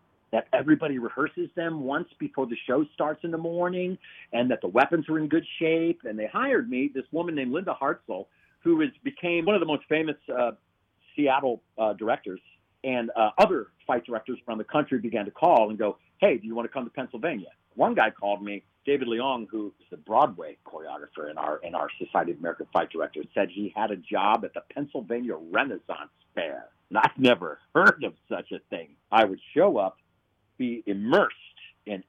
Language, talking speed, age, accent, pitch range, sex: English, 195 wpm, 50-69, American, 110-160 Hz, male